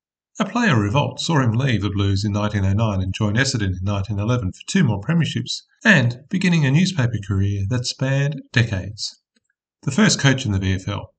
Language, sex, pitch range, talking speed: English, male, 105-150 Hz, 175 wpm